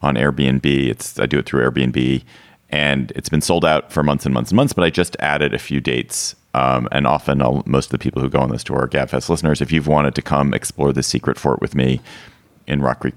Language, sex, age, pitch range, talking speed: English, male, 40-59, 65-75 Hz, 255 wpm